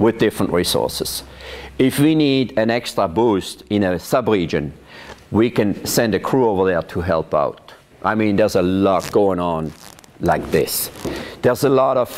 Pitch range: 90-110 Hz